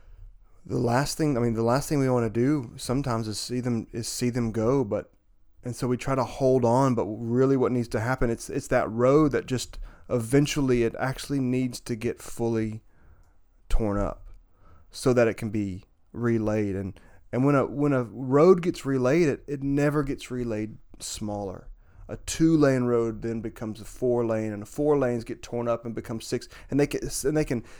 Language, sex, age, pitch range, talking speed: English, male, 30-49, 105-140 Hz, 205 wpm